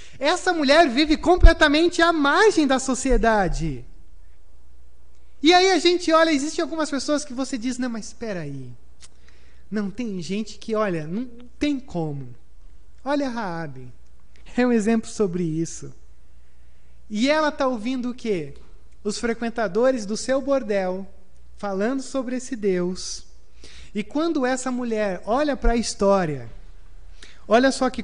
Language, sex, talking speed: Portuguese, male, 140 wpm